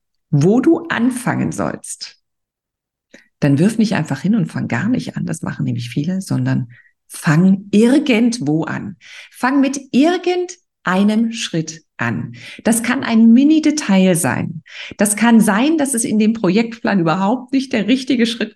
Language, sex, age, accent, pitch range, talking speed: German, female, 50-69, German, 150-225 Hz, 145 wpm